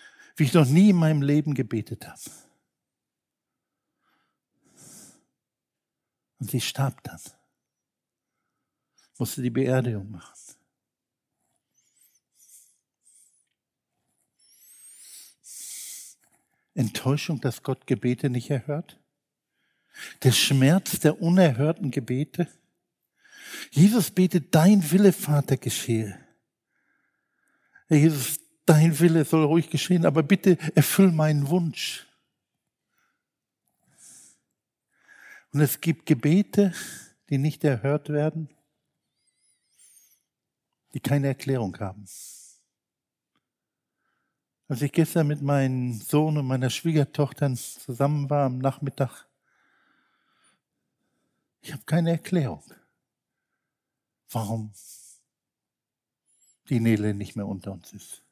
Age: 60-79